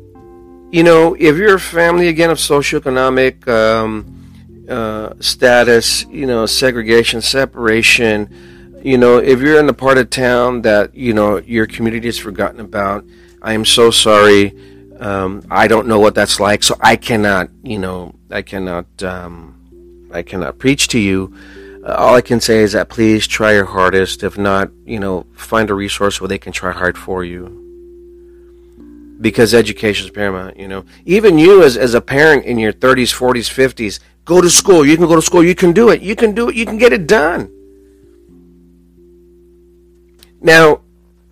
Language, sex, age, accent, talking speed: English, male, 40-59, American, 175 wpm